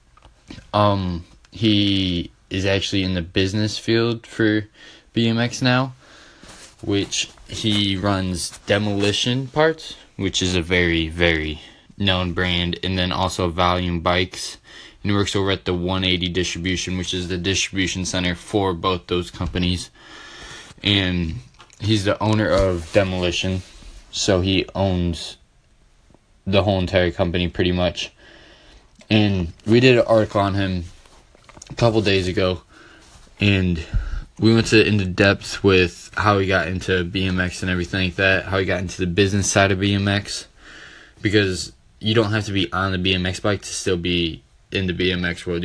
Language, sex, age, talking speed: English, male, 20-39, 145 wpm